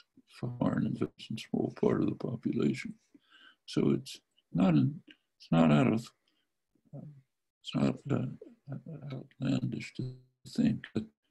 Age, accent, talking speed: 60-79, American, 115 wpm